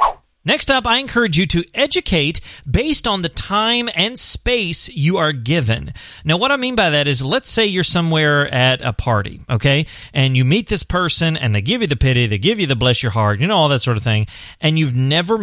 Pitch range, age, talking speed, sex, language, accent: 120-170 Hz, 30-49, 230 wpm, male, English, American